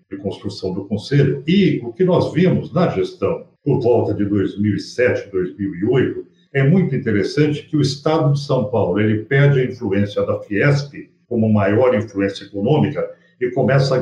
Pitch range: 105-150 Hz